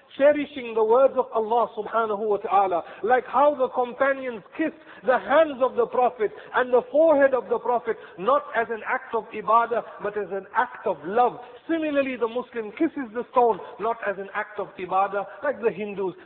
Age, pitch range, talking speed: 50-69, 180-255 Hz, 190 wpm